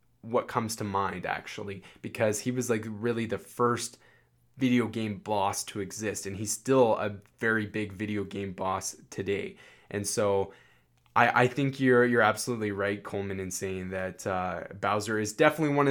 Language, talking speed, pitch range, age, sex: English, 170 wpm, 100-125 Hz, 20-39, male